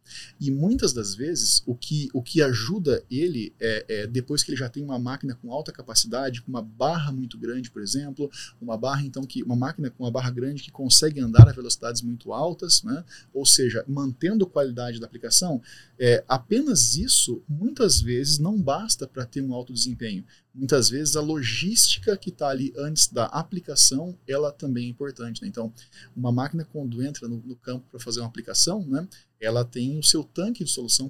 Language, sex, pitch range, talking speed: Portuguese, male, 125-165 Hz, 195 wpm